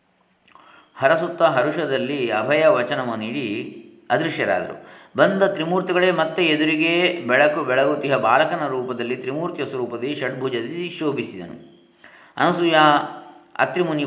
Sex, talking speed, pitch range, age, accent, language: male, 85 wpm, 120-155 Hz, 20-39, native, Kannada